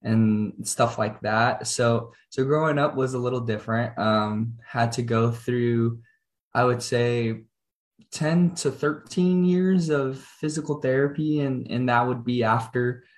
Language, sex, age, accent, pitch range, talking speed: English, male, 20-39, American, 115-145 Hz, 150 wpm